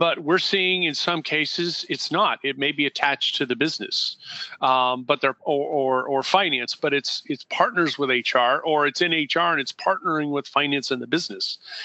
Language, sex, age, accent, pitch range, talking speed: English, male, 40-59, American, 130-160 Hz, 220 wpm